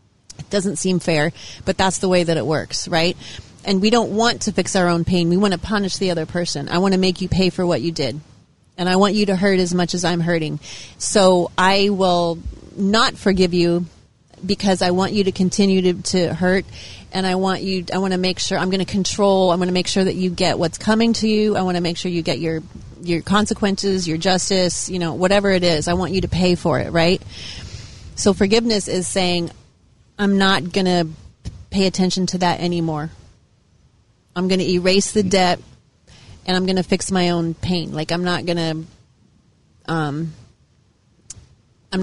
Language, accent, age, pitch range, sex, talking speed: English, American, 30-49, 170-190 Hz, female, 210 wpm